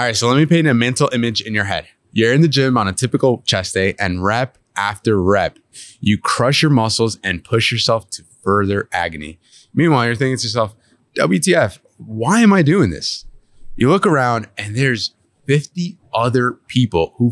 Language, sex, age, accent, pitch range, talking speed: English, male, 20-39, American, 100-130 Hz, 190 wpm